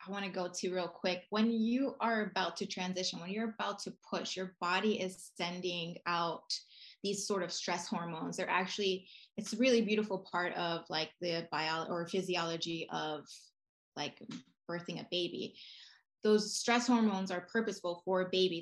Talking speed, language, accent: 170 wpm, English, American